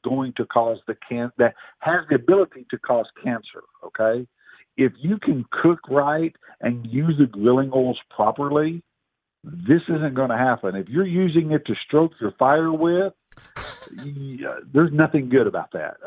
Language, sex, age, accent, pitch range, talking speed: English, male, 50-69, American, 120-170 Hz, 170 wpm